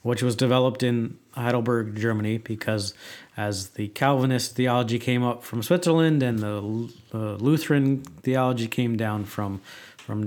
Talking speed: 140 wpm